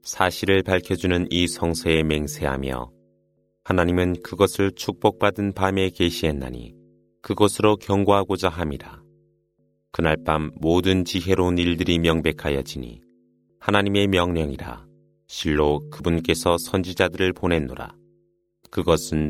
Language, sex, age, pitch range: Korean, male, 30-49, 85-95 Hz